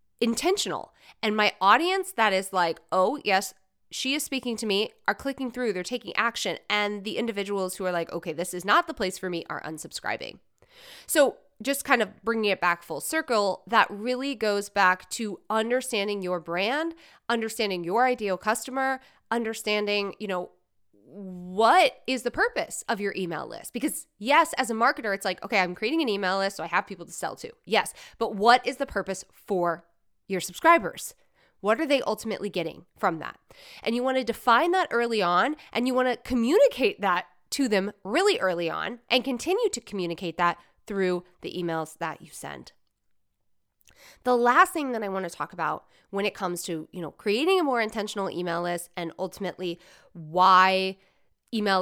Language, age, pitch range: English, 20-39, 185-255 Hz